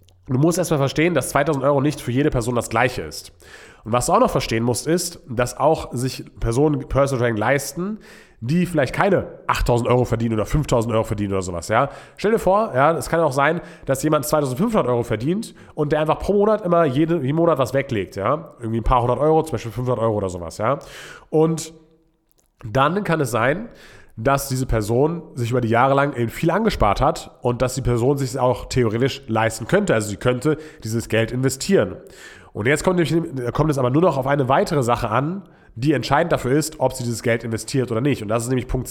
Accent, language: German, German